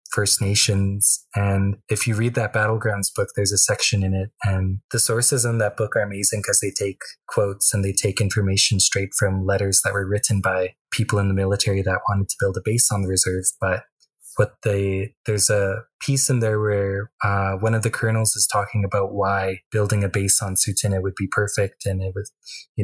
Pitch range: 95-110 Hz